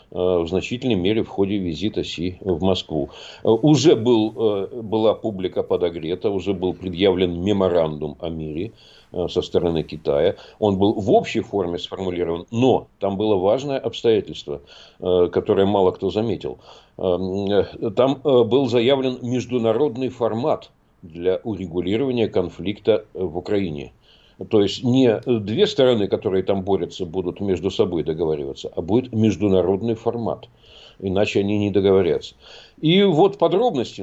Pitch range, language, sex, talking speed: 95-120 Hz, Russian, male, 125 wpm